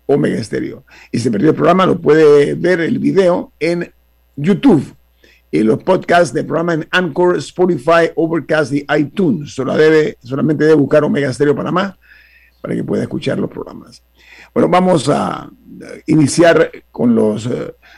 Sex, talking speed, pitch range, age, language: male, 155 wpm, 145-180 Hz, 50-69, Spanish